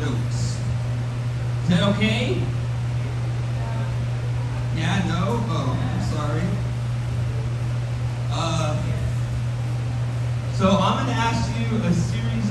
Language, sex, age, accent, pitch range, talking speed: English, male, 40-59, American, 115-120 Hz, 75 wpm